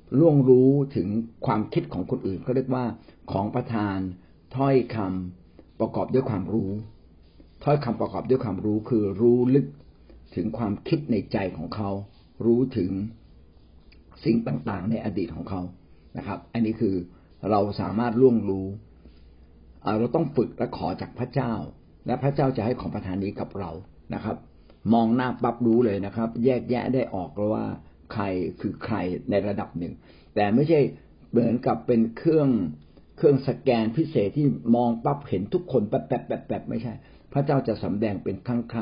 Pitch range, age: 95-125 Hz, 60-79